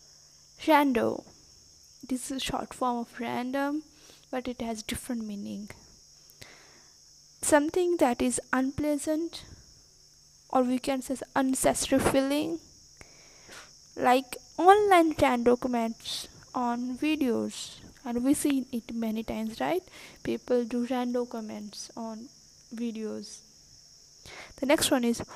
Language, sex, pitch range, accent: English, female, 235-295 Hz, Indian